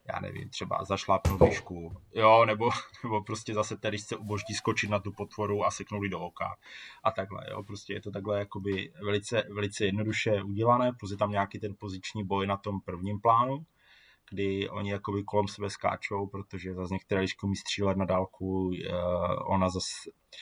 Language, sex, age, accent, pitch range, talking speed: Czech, male, 20-39, native, 95-105 Hz, 175 wpm